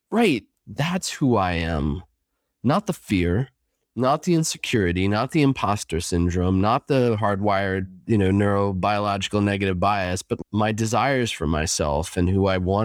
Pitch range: 95-120 Hz